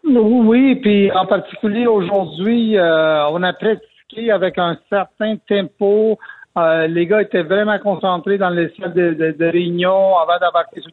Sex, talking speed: male, 160 wpm